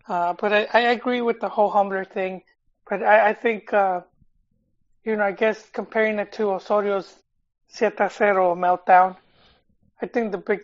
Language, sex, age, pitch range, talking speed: English, male, 20-39, 180-215 Hz, 165 wpm